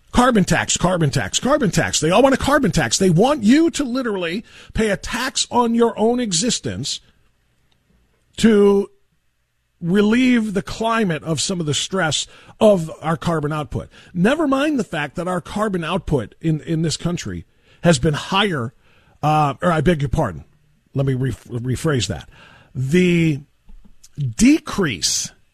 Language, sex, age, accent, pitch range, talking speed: English, male, 50-69, American, 135-190 Hz, 155 wpm